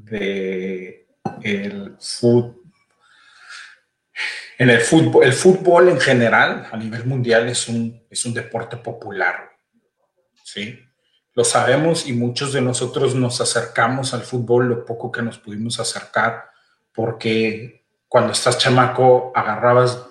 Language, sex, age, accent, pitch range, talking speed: Spanish, male, 40-59, Mexican, 115-130 Hz, 110 wpm